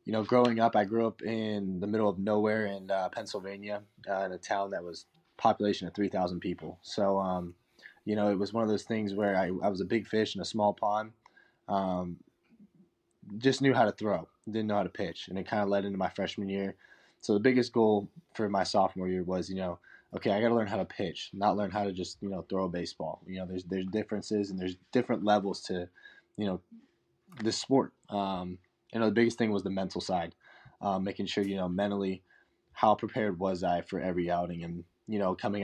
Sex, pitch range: male, 95-105 Hz